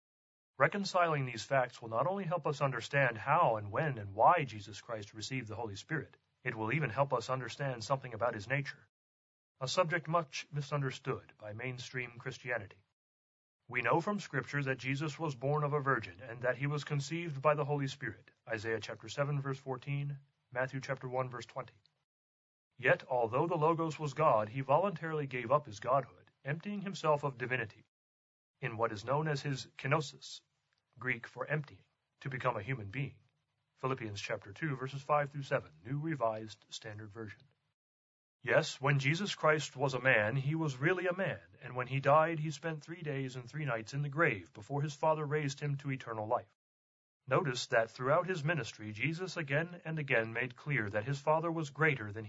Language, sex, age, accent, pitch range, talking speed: English, male, 30-49, American, 115-150 Hz, 185 wpm